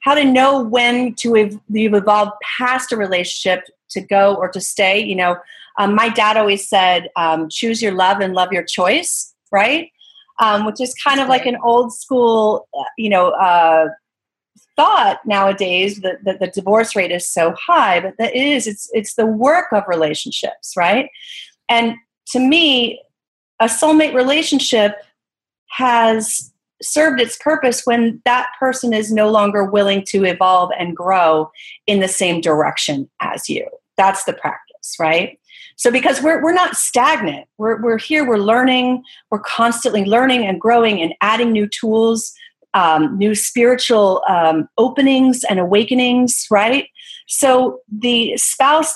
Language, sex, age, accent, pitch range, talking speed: English, female, 40-59, American, 195-255 Hz, 155 wpm